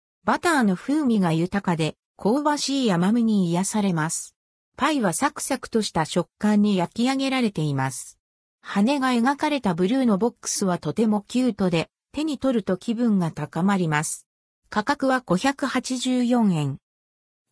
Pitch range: 175-260 Hz